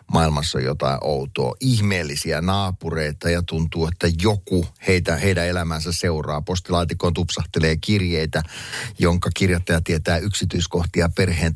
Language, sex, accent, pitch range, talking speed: Finnish, male, native, 85-105 Hz, 110 wpm